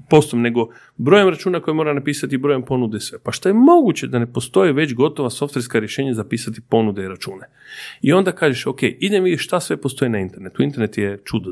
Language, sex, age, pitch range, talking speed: Croatian, male, 40-59, 110-145 Hz, 210 wpm